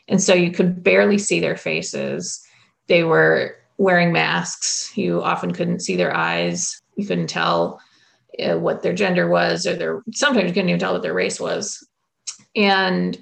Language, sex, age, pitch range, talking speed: English, female, 30-49, 175-205 Hz, 170 wpm